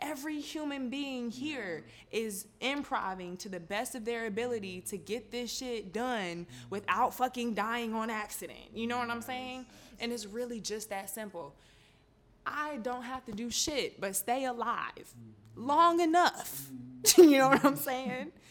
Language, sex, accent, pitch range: English, female, American, 180-240 Hz